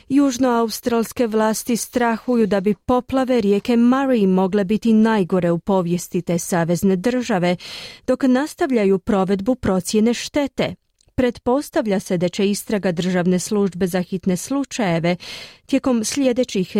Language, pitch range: Croatian, 190-245 Hz